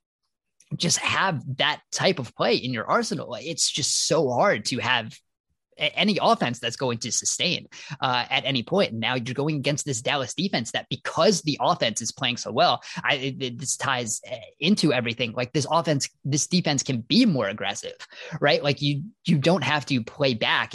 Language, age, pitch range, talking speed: English, 20-39, 120-145 Hz, 185 wpm